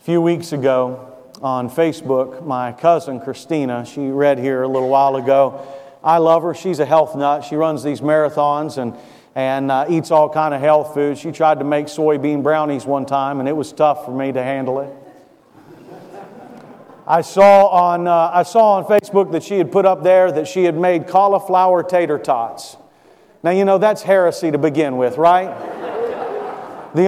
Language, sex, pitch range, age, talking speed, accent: English, male, 150-190 Hz, 40-59, 185 wpm, American